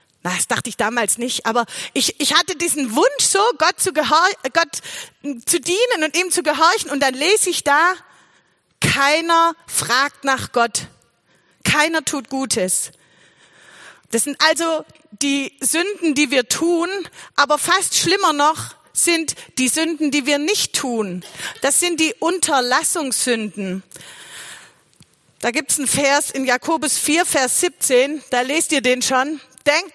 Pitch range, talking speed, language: 255-320 Hz, 145 wpm, German